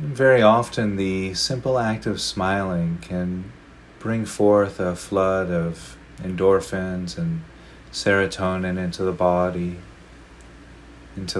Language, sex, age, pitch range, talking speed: English, male, 30-49, 80-105 Hz, 105 wpm